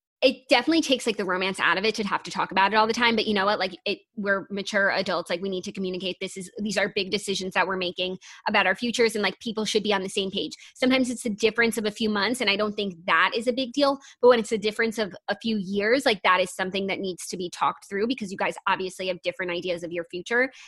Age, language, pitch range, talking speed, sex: 20-39, English, 195-250 Hz, 285 wpm, female